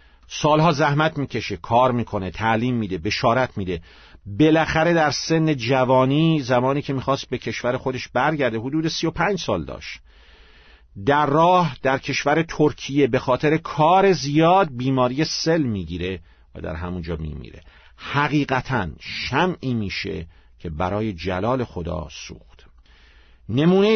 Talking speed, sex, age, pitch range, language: 130 wpm, male, 50-69, 100-155 Hz, Persian